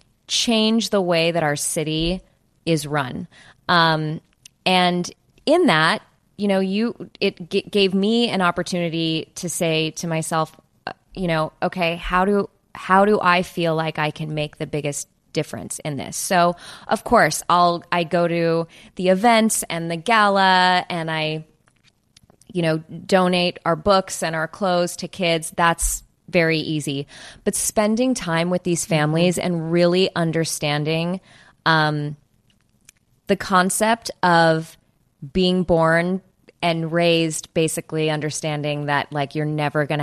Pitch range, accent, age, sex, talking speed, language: 155-180 Hz, American, 20-39, female, 140 wpm, English